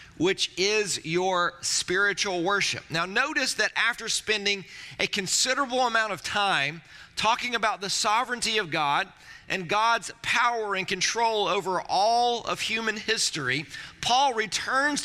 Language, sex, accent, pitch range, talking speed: English, male, American, 175-225 Hz, 130 wpm